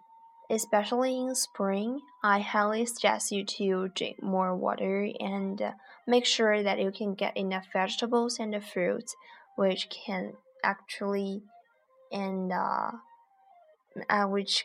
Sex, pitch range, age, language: female, 195-260 Hz, 20-39, Chinese